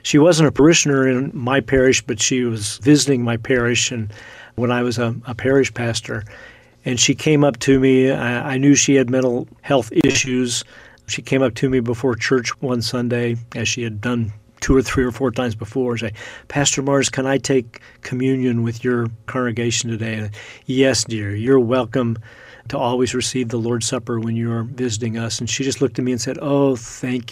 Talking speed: 200 wpm